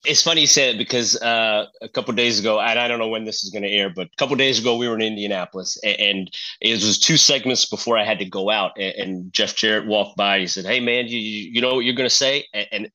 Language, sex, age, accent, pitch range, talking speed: English, male, 30-49, American, 110-140 Hz, 285 wpm